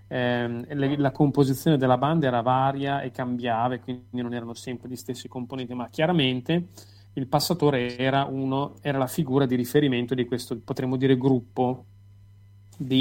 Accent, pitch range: native, 120-150 Hz